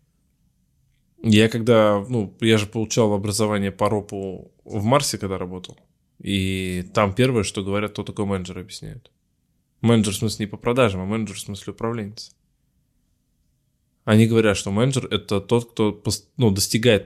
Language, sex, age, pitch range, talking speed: Russian, male, 20-39, 100-110 Hz, 150 wpm